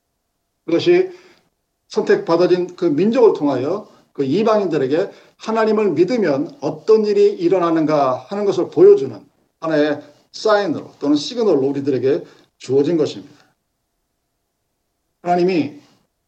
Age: 50-69